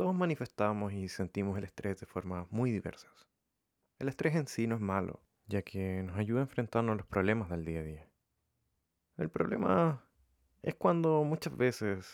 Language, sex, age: Spanish, male, 20-39